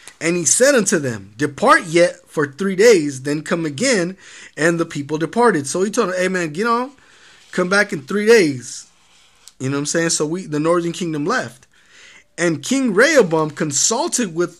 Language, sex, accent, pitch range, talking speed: English, male, American, 150-215 Hz, 190 wpm